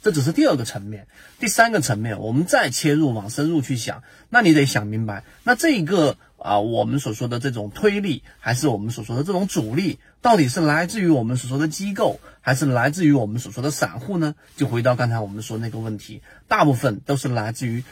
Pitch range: 115-155 Hz